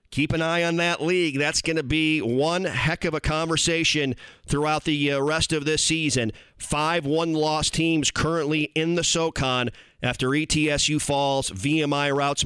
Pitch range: 135-160 Hz